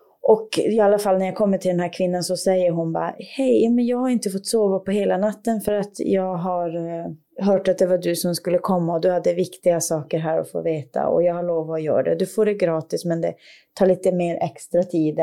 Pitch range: 175-215 Hz